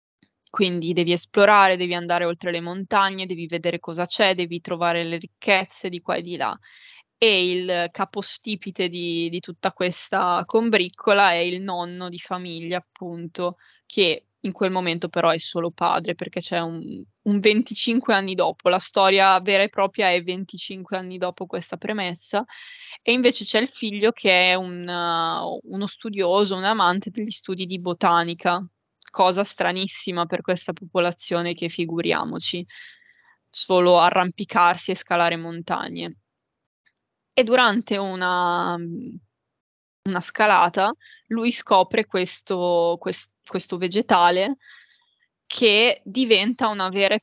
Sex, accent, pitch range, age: female, native, 175-210 Hz, 20-39